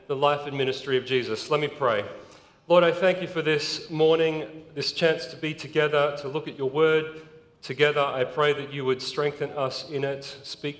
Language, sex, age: English, male, 40-59